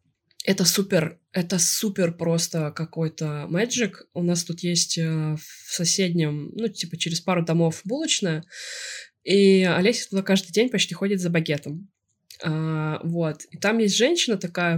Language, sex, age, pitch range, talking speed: Russian, female, 20-39, 165-210 Hz, 140 wpm